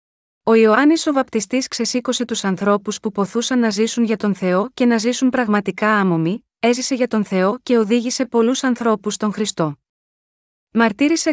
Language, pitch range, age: Greek, 200-245 Hz, 30-49